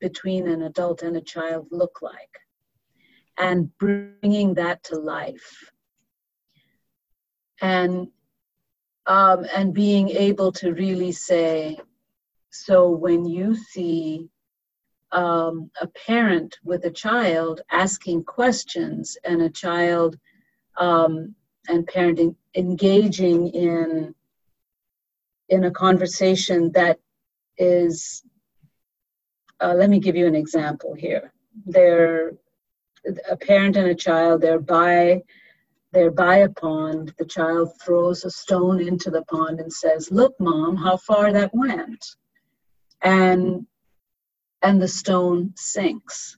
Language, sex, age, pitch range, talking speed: English, female, 40-59, 165-195 Hz, 115 wpm